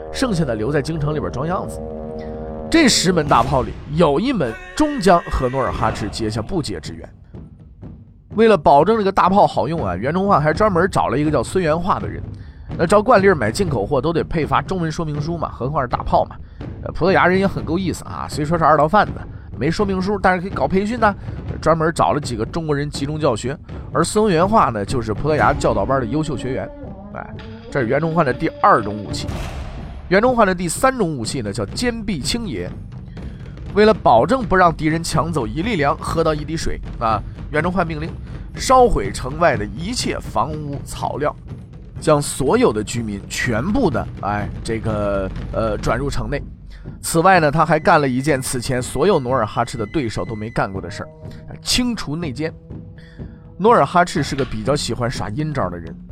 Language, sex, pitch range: Chinese, male, 110-175 Hz